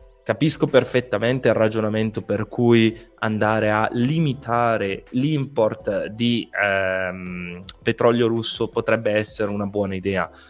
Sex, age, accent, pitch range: male, 20-39, native, 105-130 Hz